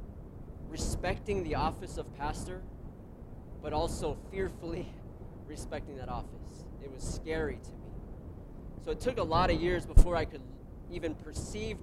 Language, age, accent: English, 20-39, American